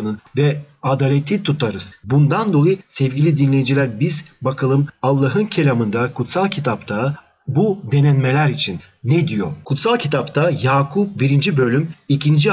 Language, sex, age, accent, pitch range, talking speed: Turkish, male, 40-59, native, 130-170 Hz, 115 wpm